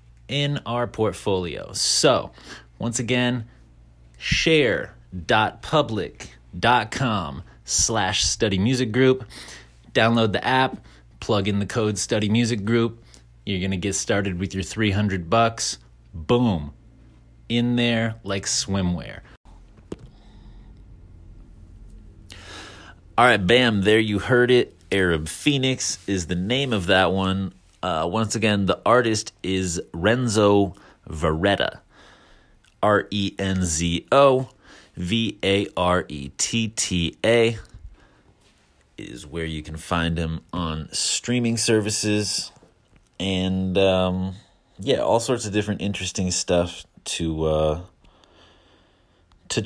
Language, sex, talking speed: English, male, 110 wpm